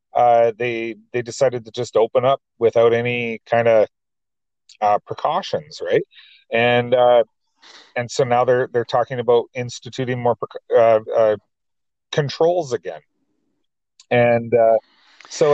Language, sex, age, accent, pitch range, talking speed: English, male, 40-59, American, 120-150 Hz, 125 wpm